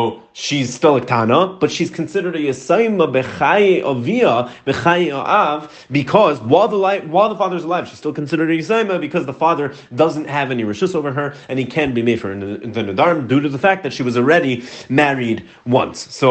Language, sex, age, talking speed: English, male, 30-49, 190 wpm